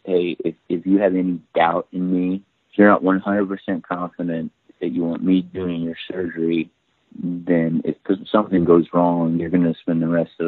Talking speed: 195 wpm